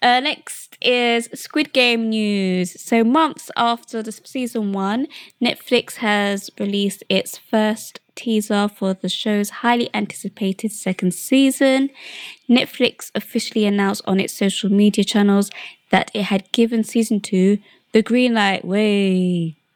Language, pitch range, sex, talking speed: English, 195-235 Hz, female, 130 wpm